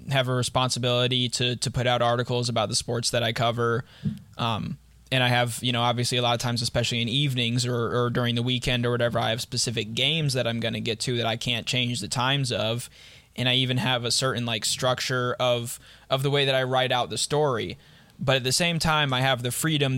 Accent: American